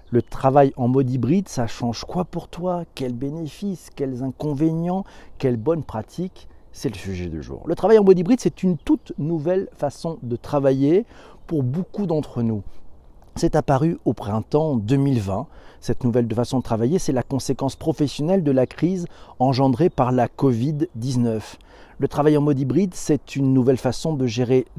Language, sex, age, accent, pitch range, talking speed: French, male, 40-59, French, 115-160 Hz, 170 wpm